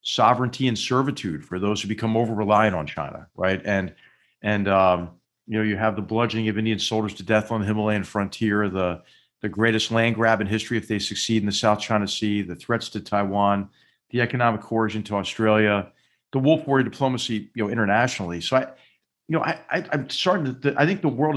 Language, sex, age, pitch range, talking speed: English, male, 40-59, 105-135 Hz, 210 wpm